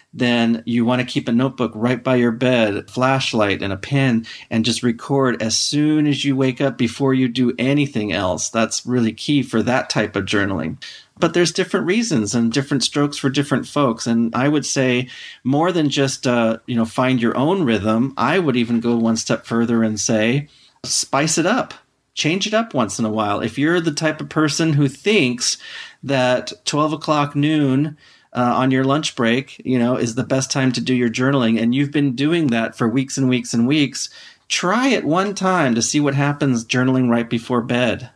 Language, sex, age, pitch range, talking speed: English, male, 40-59, 115-145 Hz, 205 wpm